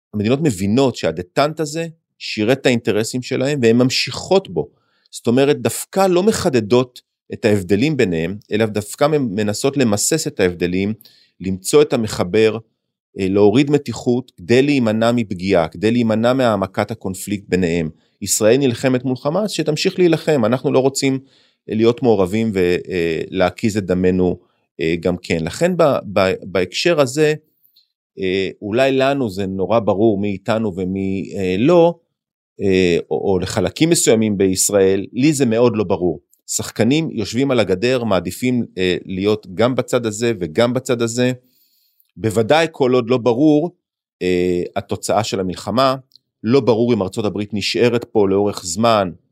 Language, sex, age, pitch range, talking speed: Hebrew, male, 30-49, 100-135 Hz, 135 wpm